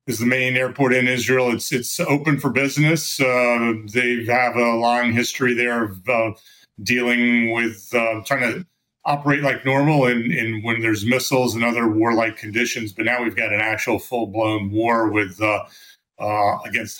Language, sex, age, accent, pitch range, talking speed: English, male, 40-59, American, 110-125 Hz, 175 wpm